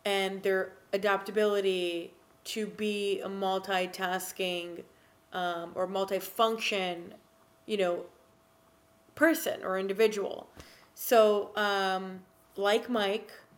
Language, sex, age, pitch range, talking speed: English, female, 30-49, 180-210 Hz, 85 wpm